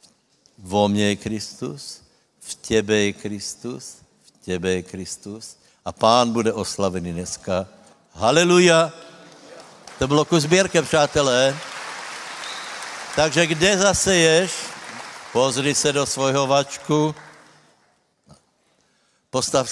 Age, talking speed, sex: 60-79, 90 wpm, male